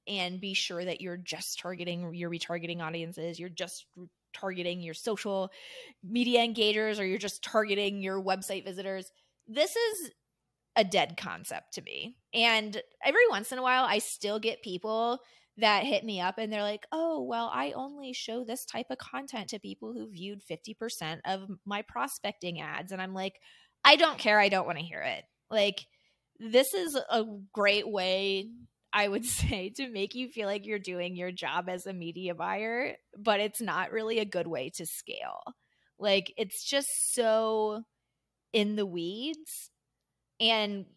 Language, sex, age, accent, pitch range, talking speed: English, female, 20-39, American, 180-225 Hz, 170 wpm